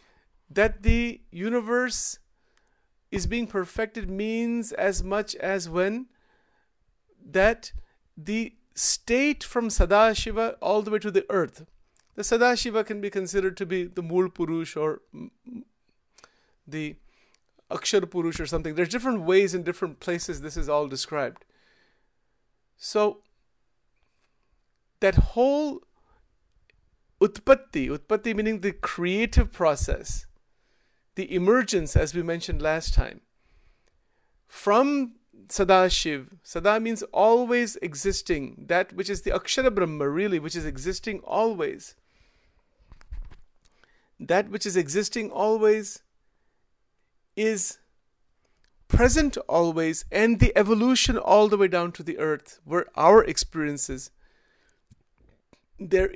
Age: 40-59